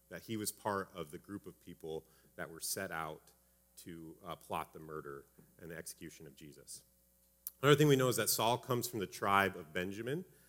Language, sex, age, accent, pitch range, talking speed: English, male, 30-49, American, 80-105 Hz, 205 wpm